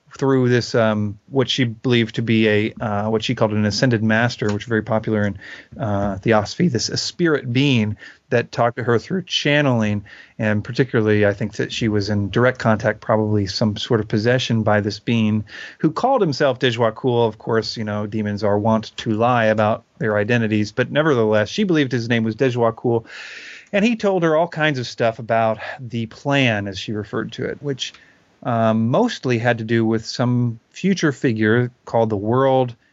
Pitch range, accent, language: 110-140 Hz, American, English